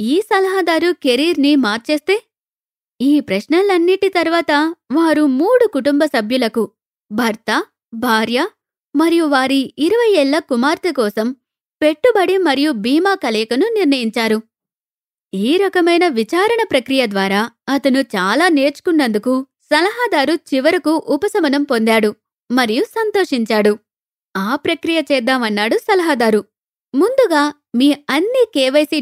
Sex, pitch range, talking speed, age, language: female, 245-335 Hz, 95 wpm, 20-39, Telugu